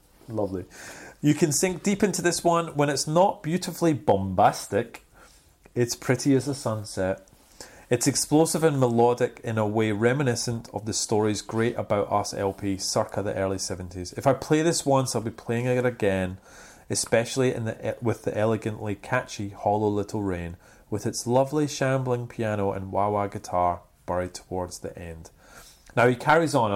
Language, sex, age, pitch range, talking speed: English, male, 30-49, 105-150 Hz, 165 wpm